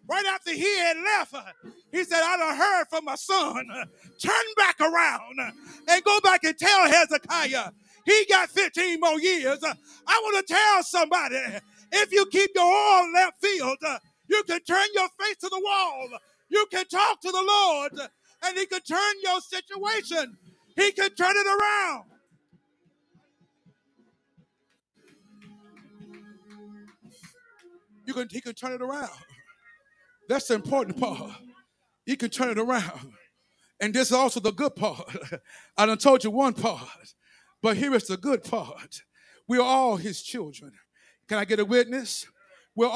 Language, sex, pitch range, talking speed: English, male, 230-360 Hz, 155 wpm